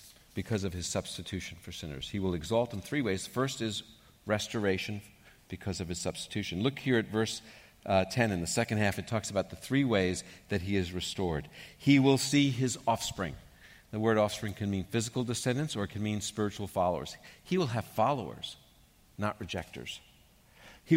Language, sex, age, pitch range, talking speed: English, male, 50-69, 90-120 Hz, 185 wpm